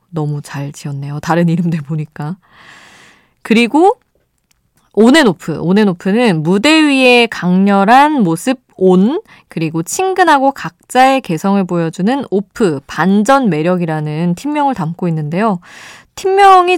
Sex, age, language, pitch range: female, 20-39, Korean, 160-240 Hz